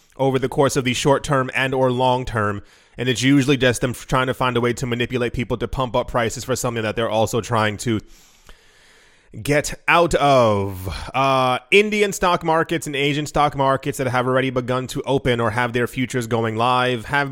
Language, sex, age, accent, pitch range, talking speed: English, male, 20-39, American, 120-140 Hz, 205 wpm